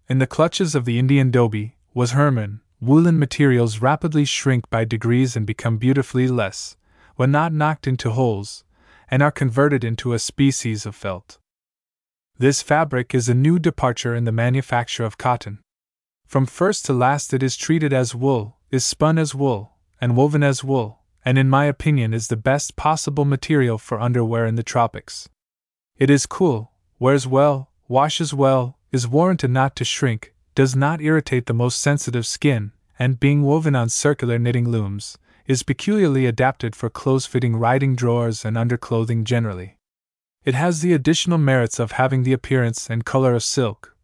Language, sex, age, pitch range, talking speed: English, male, 20-39, 115-140 Hz, 170 wpm